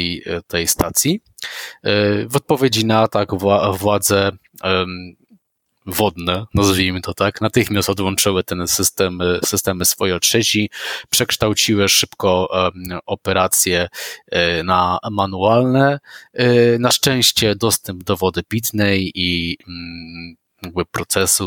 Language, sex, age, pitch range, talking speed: Polish, male, 20-39, 90-105 Hz, 85 wpm